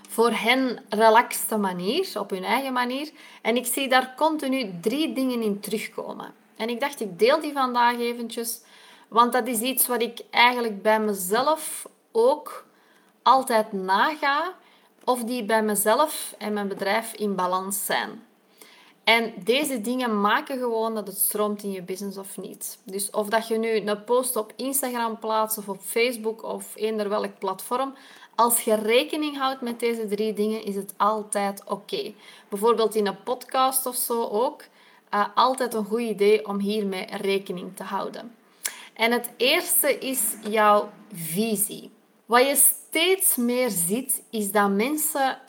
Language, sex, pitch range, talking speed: Dutch, female, 210-250 Hz, 160 wpm